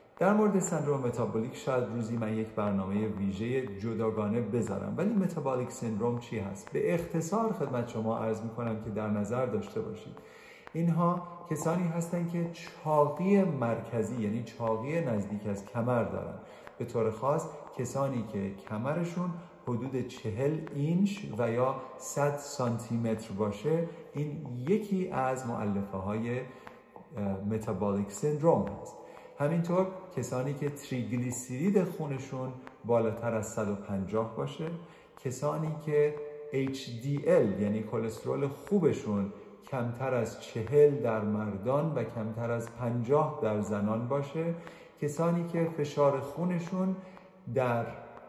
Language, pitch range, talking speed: Persian, 110-155 Hz, 115 wpm